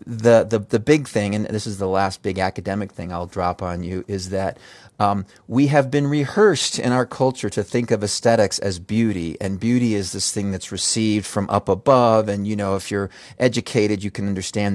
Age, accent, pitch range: 30-49, American, 100-130 Hz